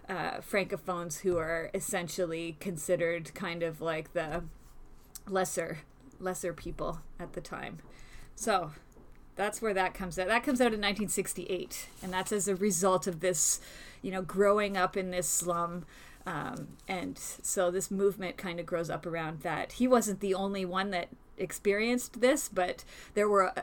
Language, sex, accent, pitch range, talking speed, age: English, female, American, 180-225 Hz, 160 wpm, 30-49